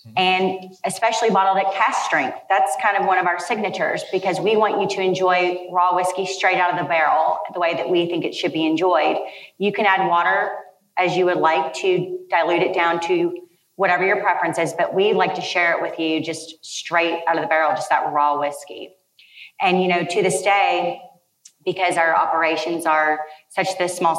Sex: female